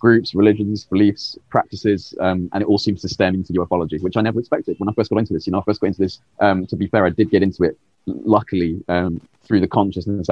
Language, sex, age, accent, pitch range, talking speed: English, male, 20-39, British, 90-110 Hz, 260 wpm